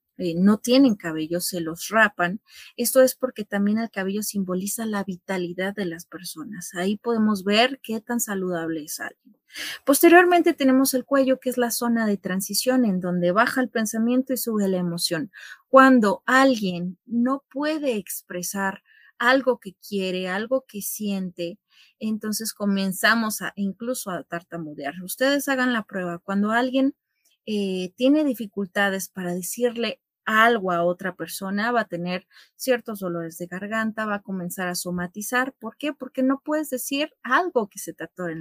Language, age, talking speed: Spanish, 30-49, 160 wpm